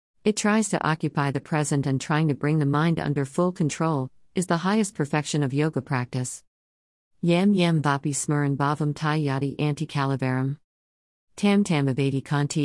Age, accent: 50-69, American